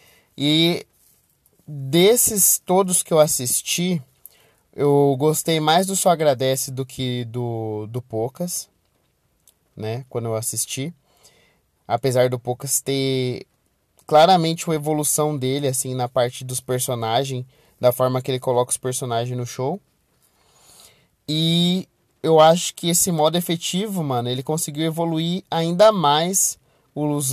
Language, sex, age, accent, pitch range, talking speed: Portuguese, male, 20-39, Brazilian, 130-165 Hz, 125 wpm